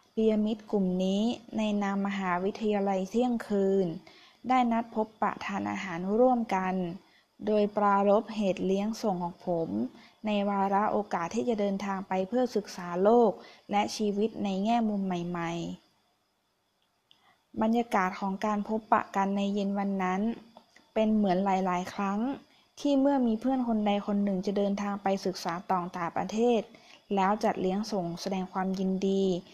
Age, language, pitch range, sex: 20-39, Thai, 190-220 Hz, female